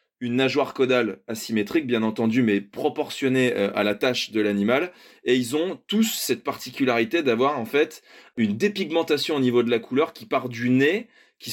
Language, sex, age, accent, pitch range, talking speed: French, male, 20-39, French, 120-150 Hz, 175 wpm